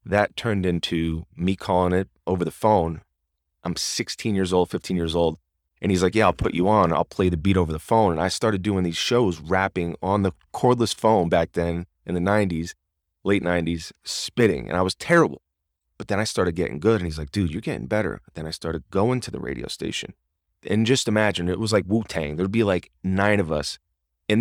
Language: English